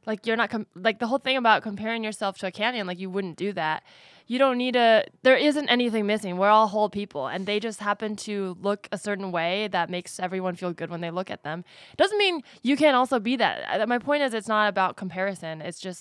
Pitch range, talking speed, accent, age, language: 170-215 Hz, 245 wpm, American, 20-39, English